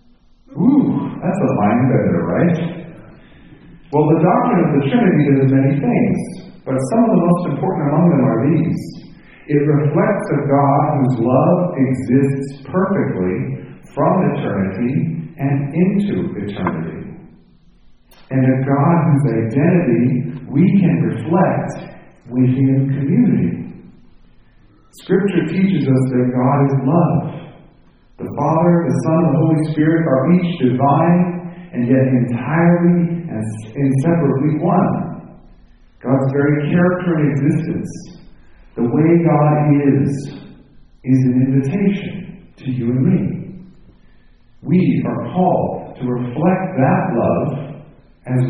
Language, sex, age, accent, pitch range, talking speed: English, male, 50-69, American, 135-180 Hz, 120 wpm